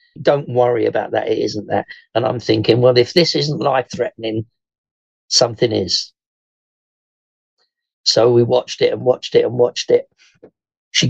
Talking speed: 150 wpm